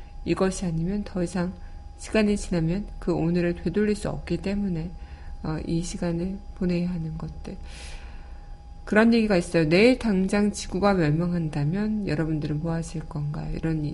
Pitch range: 160-200 Hz